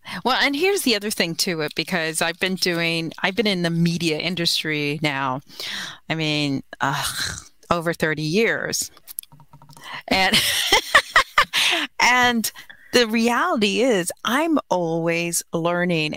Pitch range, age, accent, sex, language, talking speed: 155-205 Hz, 40-59, American, female, English, 120 wpm